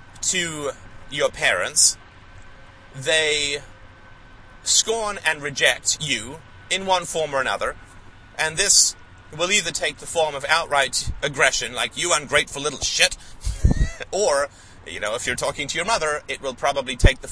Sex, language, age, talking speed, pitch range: male, English, 30-49, 145 wpm, 105-175 Hz